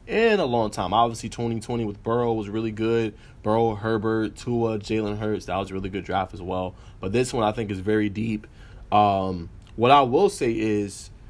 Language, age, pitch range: English, 20-39, 100-115 Hz